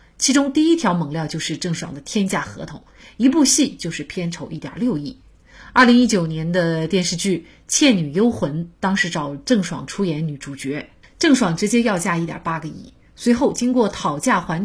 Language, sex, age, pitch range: Chinese, female, 30-49, 165-230 Hz